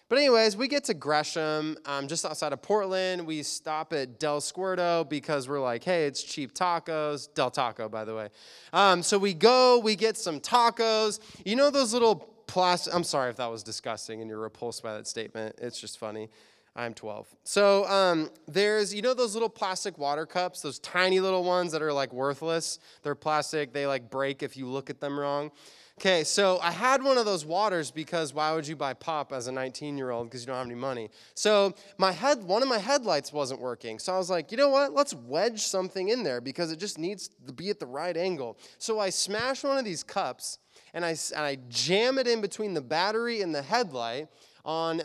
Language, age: English, 20-39